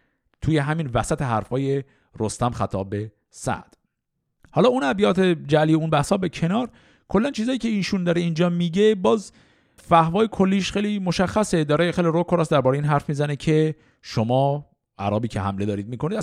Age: 50-69